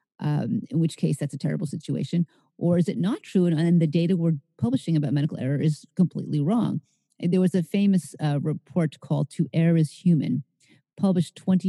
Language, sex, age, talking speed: English, female, 50-69, 195 wpm